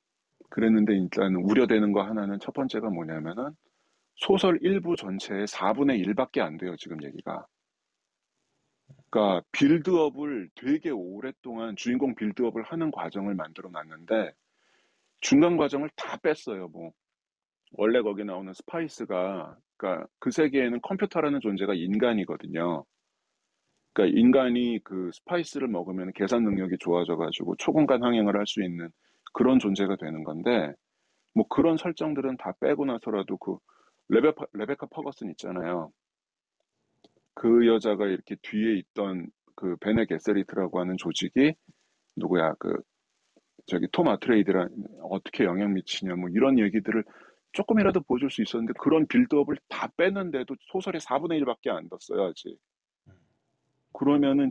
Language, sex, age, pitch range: Korean, male, 40-59, 100-155 Hz